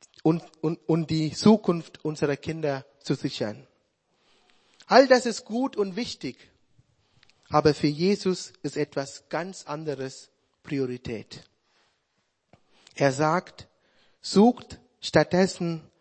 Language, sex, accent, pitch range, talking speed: German, male, German, 140-185 Hz, 100 wpm